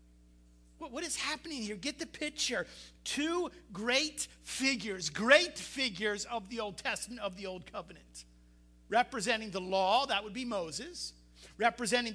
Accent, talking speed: American, 140 wpm